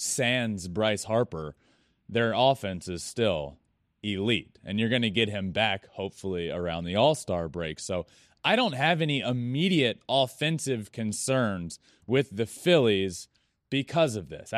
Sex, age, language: male, 30-49, English